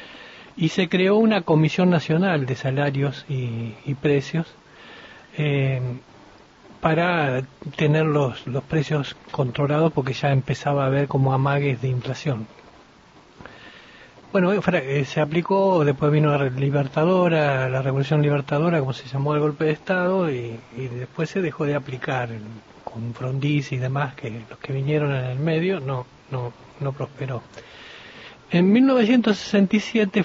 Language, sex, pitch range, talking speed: Spanish, male, 130-160 Hz, 135 wpm